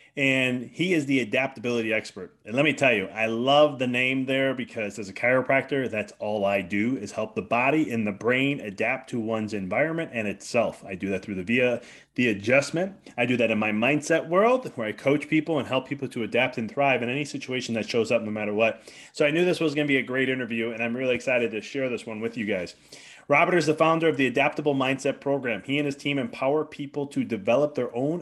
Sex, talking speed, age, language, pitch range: male, 240 wpm, 30-49, English, 115-145 Hz